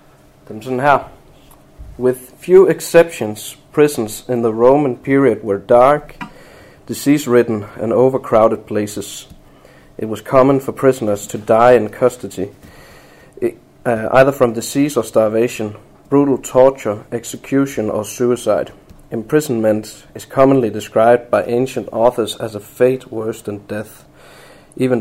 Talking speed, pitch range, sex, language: 115 wpm, 110-140 Hz, male, Danish